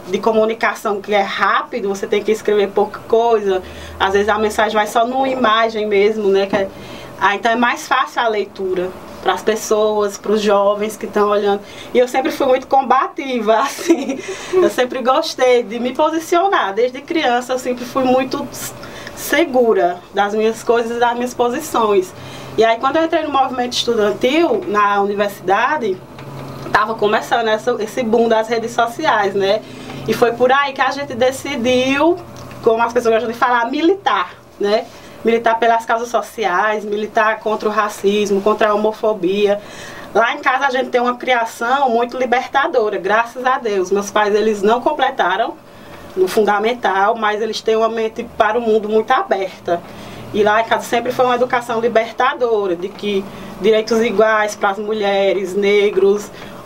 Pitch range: 210-255 Hz